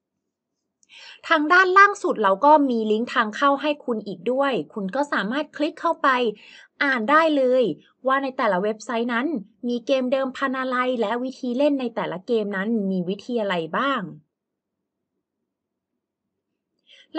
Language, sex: Thai, female